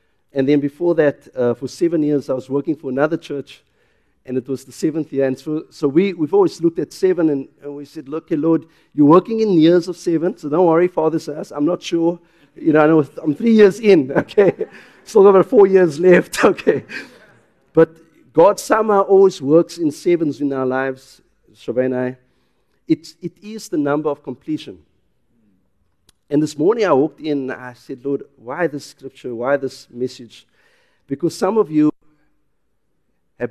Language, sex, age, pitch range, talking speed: English, male, 50-69, 120-165 Hz, 190 wpm